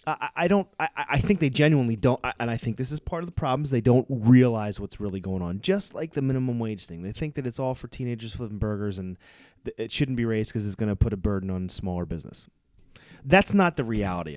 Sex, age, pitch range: male, 30-49, 110-150 Hz